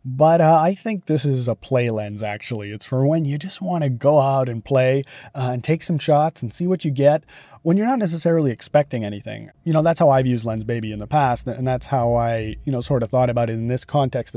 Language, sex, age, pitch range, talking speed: English, male, 30-49, 120-145 Hz, 260 wpm